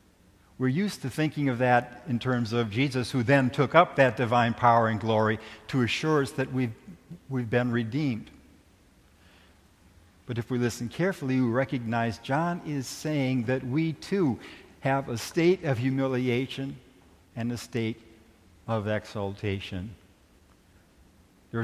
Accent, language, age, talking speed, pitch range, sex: American, English, 60-79, 140 wpm, 95-135 Hz, male